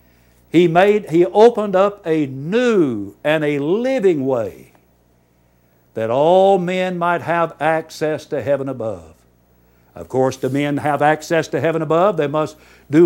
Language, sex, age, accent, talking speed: English, male, 60-79, American, 145 wpm